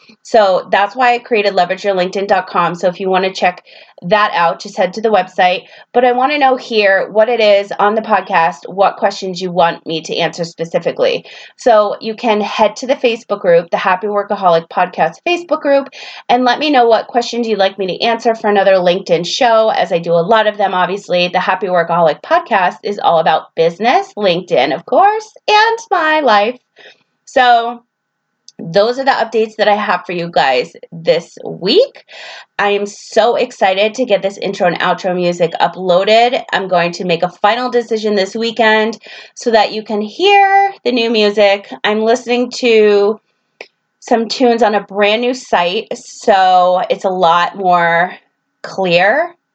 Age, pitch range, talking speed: 30-49, 185-240 Hz, 180 wpm